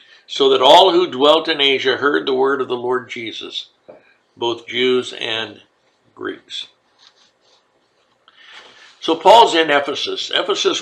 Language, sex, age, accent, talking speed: English, male, 60-79, American, 130 wpm